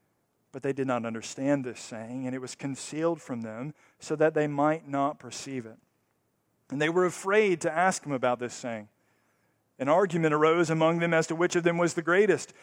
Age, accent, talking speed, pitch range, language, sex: 50-69, American, 205 wpm, 145-225 Hz, English, male